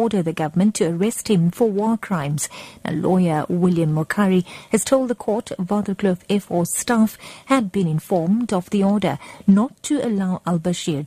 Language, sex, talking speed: English, female, 175 wpm